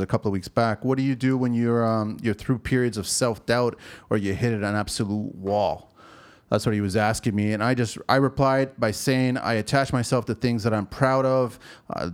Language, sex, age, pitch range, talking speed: English, male, 30-49, 100-125 Hz, 230 wpm